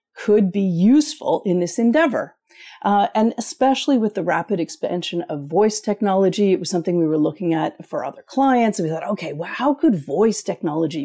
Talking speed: 190 wpm